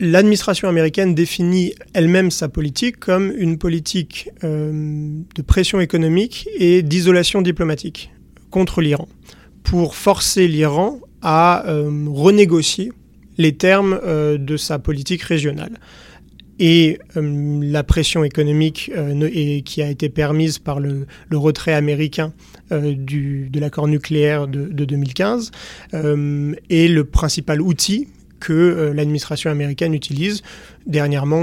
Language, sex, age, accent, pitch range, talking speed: French, male, 30-49, French, 150-180 Hz, 120 wpm